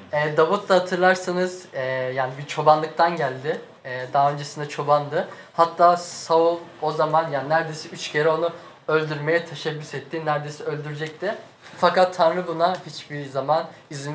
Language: Turkish